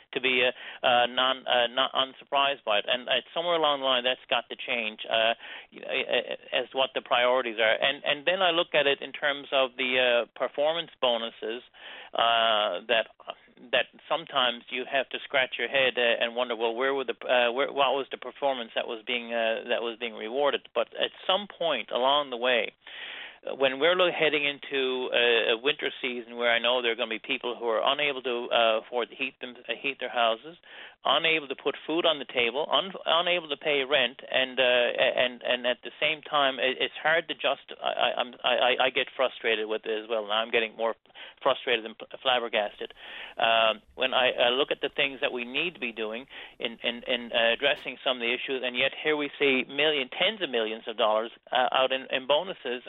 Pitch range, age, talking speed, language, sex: 115-140 Hz, 40-59, 215 wpm, English, male